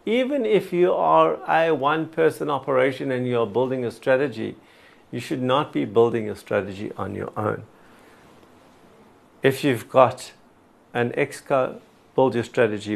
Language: English